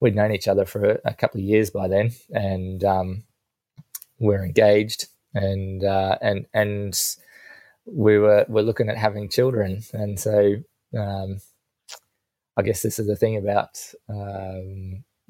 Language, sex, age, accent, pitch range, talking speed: English, male, 20-39, Australian, 100-110 Hz, 145 wpm